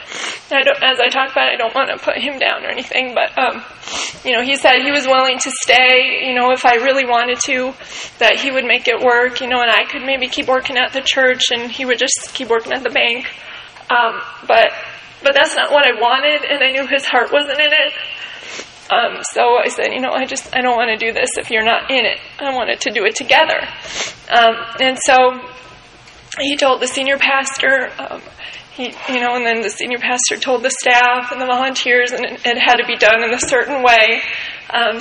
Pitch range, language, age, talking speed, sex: 245-300 Hz, English, 20-39, 230 wpm, female